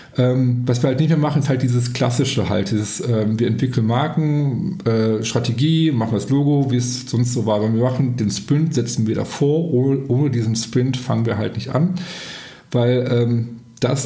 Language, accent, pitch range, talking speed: German, German, 120-145 Hz, 185 wpm